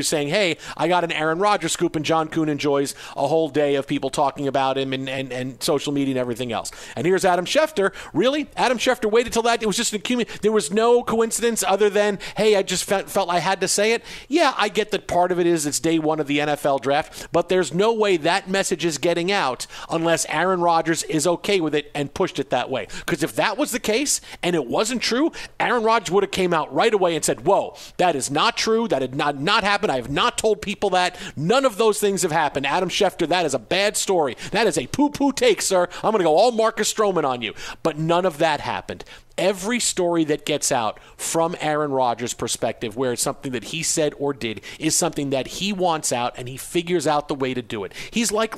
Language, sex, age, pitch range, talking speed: English, male, 40-59, 150-205 Hz, 245 wpm